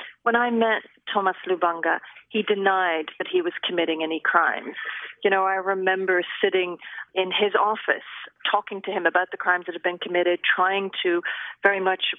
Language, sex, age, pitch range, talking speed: English, female, 40-59, 180-230 Hz, 170 wpm